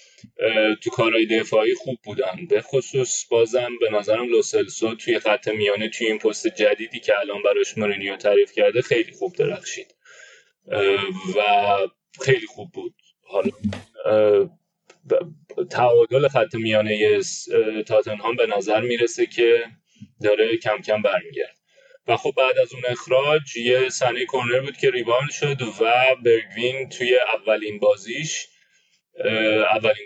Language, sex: Persian, male